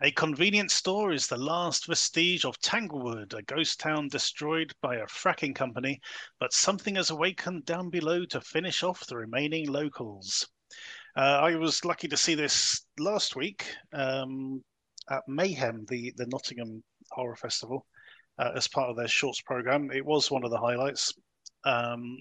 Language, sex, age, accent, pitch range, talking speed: English, male, 30-49, British, 120-155 Hz, 160 wpm